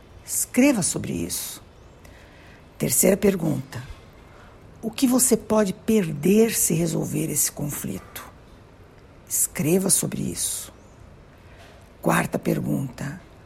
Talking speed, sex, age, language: 85 wpm, female, 60-79, Portuguese